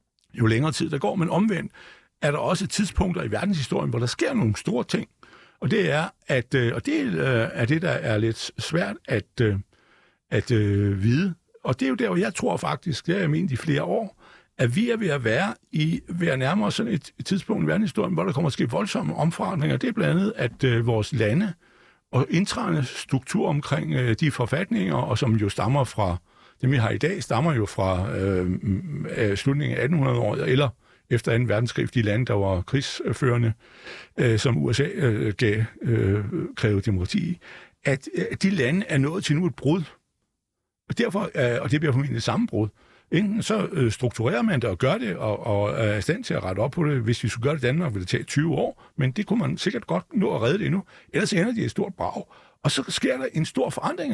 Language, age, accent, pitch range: Danish, 60-79, native, 115-170 Hz